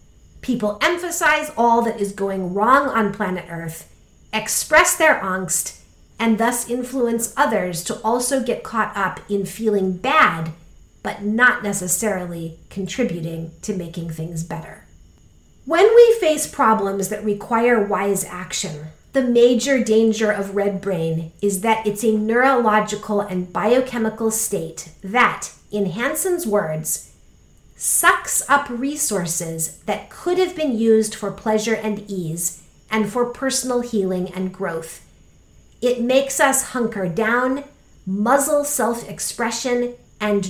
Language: English